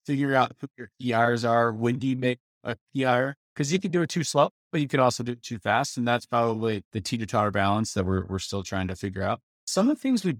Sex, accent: male, American